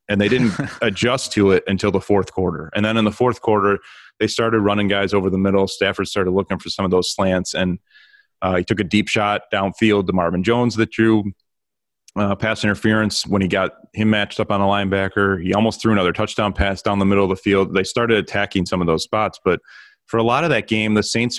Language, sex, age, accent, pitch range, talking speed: English, male, 30-49, American, 95-110 Hz, 235 wpm